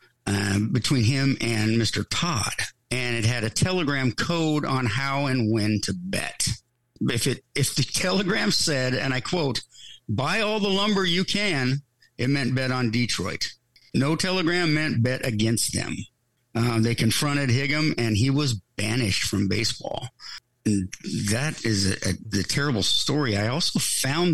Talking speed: 165 wpm